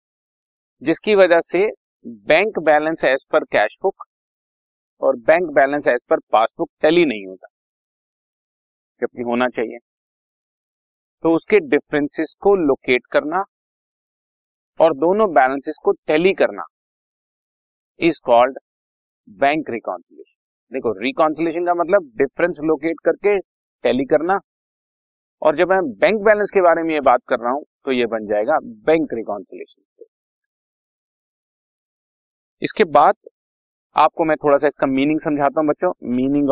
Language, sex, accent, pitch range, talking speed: Hindi, male, native, 130-185 Hz, 125 wpm